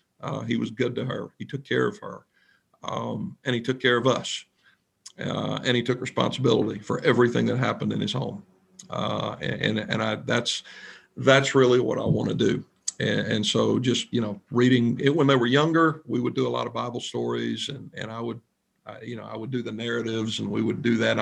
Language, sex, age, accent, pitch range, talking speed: English, male, 50-69, American, 115-135 Hz, 225 wpm